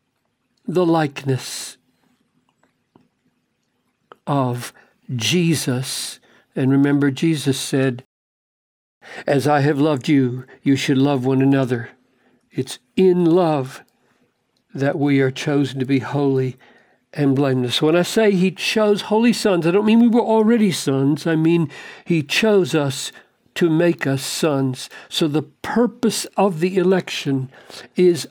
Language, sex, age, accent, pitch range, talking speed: English, male, 60-79, American, 130-175 Hz, 125 wpm